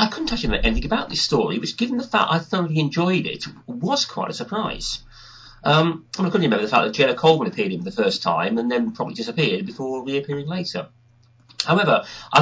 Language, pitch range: English, 115-175 Hz